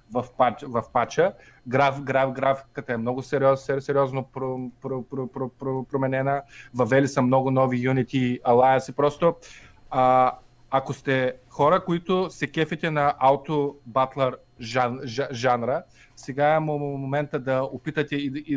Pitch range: 125-140 Hz